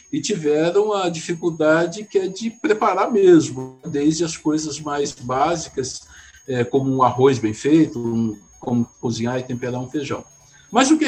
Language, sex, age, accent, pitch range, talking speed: Portuguese, male, 60-79, Brazilian, 145-215 Hz, 150 wpm